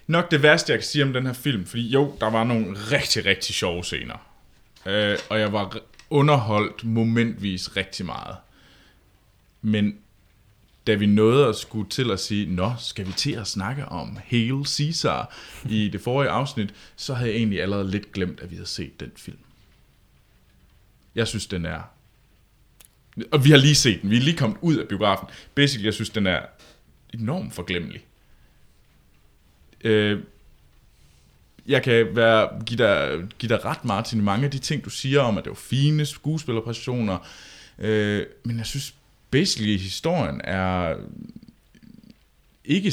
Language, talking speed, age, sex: Danish, 160 wpm, 20-39, male